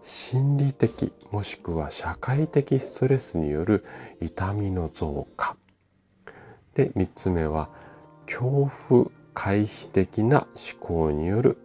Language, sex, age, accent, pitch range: Japanese, male, 40-59, native, 80-130 Hz